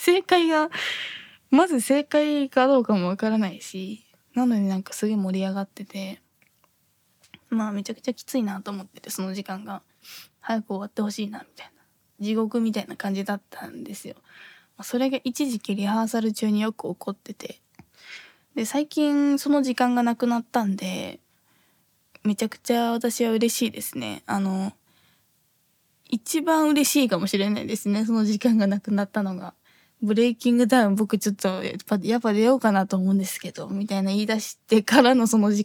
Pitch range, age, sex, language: 200-250 Hz, 20-39, female, Japanese